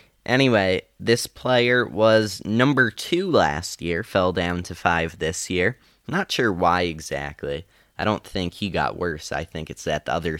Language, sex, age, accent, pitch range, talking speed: English, male, 10-29, American, 85-115 Hz, 180 wpm